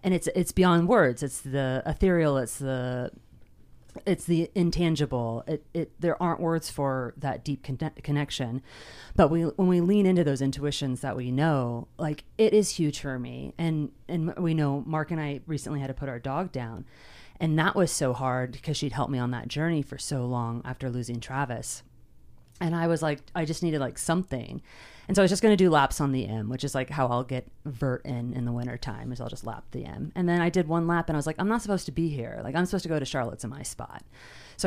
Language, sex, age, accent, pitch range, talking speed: English, female, 30-49, American, 130-185 Hz, 235 wpm